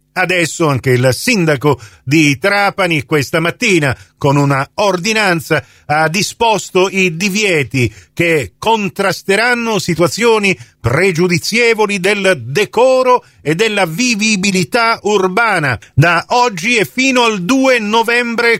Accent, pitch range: native, 165-220 Hz